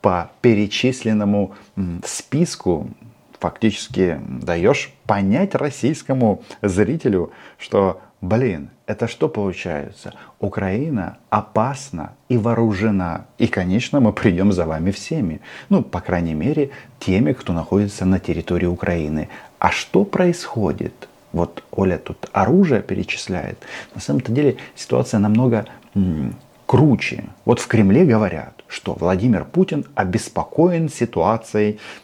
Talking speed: 105 wpm